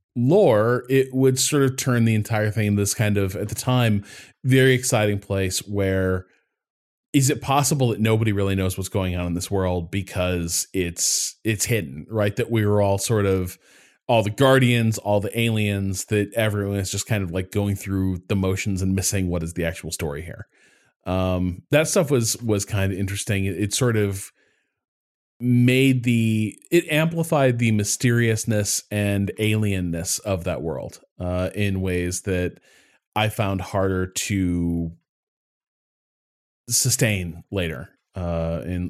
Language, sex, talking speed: English, male, 160 wpm